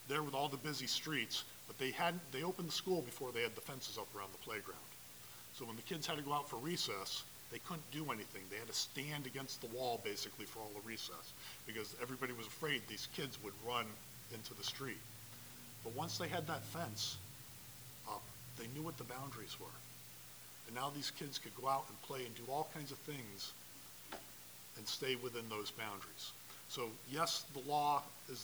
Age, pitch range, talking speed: 40-59, 100-145 Hz, 205 wpm